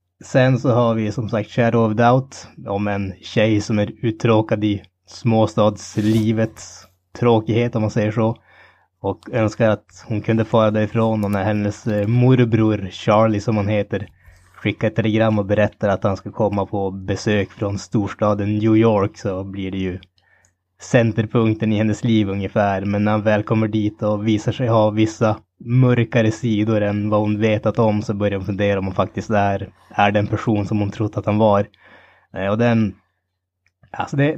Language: Swedish